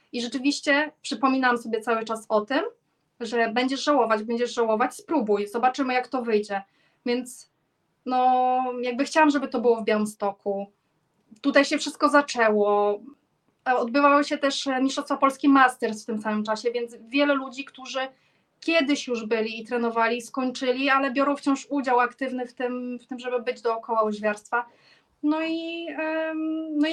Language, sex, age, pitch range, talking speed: Polish, female, 20-39, 230-280 Hz, 150 wpm